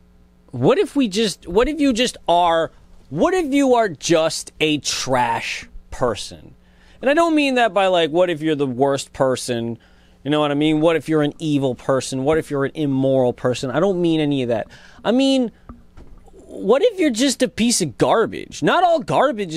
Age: 30-49